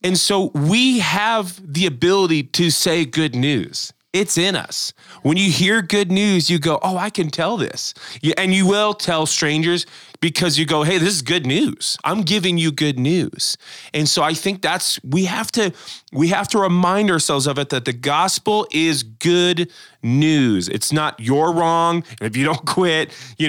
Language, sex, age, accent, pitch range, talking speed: English, male, 20-39, American, 155-200 Hz, 190 wpm